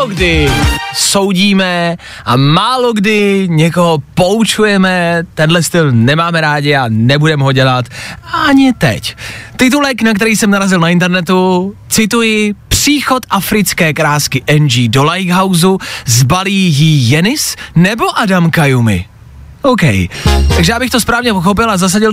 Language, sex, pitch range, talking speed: Czech, male, 140-210 Hz, 125 wpm